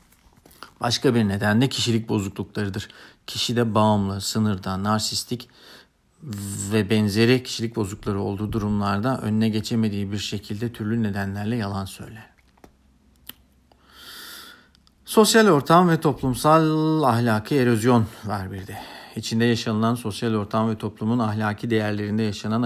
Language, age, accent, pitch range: Turkish, 50-69, native, 105-120 Hz